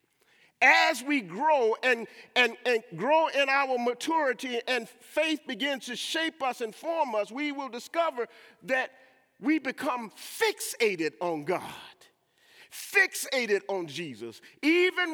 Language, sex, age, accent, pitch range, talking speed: English, male, 40-59, American, 235-315 Hz, 125 wpm